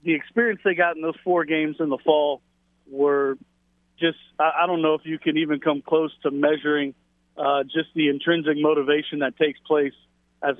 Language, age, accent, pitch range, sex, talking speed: English, 40-59, American, 140-160 Hz, male, 185 wpm